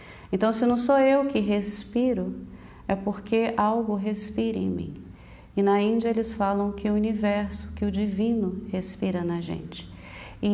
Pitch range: 190-225 Hz